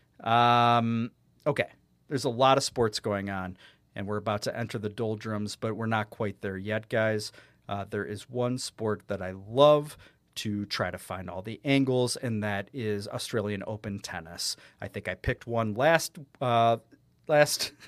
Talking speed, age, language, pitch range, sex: 175 wpm, 40-59, English, 105-130 Hz, male